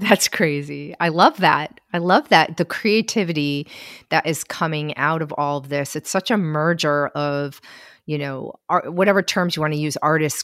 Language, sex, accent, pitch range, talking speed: English, female, American, 145-165 Hz, 190 wpm